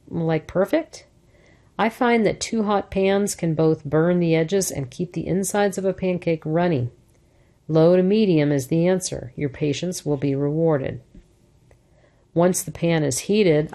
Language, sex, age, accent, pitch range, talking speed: English, female, 50-69, American, 145-185 Hz, 160 wpm